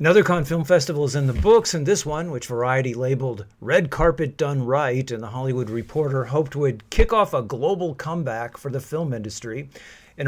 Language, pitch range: English, 115-155 Hz